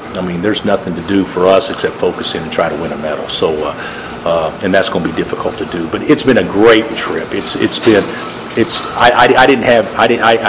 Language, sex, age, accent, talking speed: English, male, 50-69, American, 255 wpm